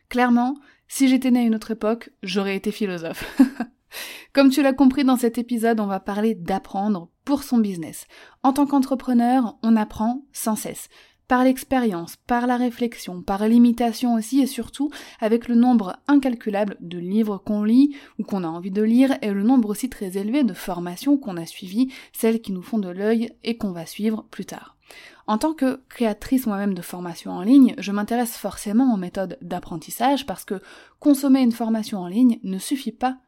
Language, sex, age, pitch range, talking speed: French, female, 20-39, 205-260 Hz, 190 wpm